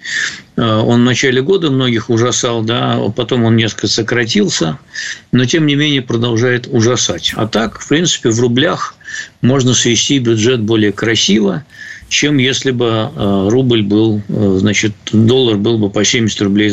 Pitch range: 105-130 Hz